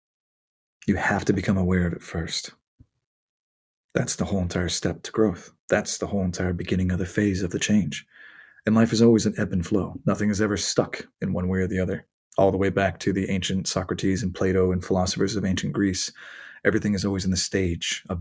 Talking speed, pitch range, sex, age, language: 220 wpm, 95-110 Hz, male, 30-49, English